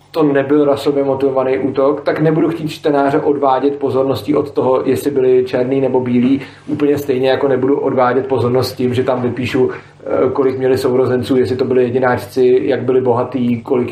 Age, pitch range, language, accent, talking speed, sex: 40-59, 130-150 Hz, Czech, native, 170 wpm, male